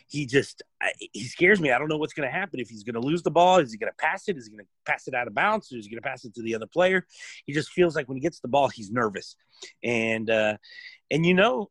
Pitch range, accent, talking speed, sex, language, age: 125-160 Hz, American, 315 wpm, male, English, 30-49